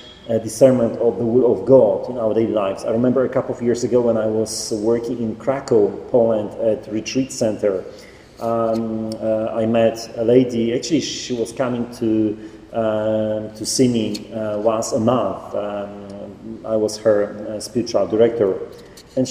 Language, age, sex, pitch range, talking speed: English, 40-59, male, 110-135 Hz, 170 wpm